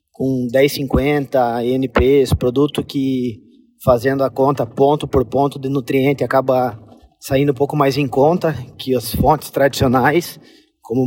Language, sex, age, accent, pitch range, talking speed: Portuguese, male, 20-39, Brazilian, 130-150 Hz, 135 wpm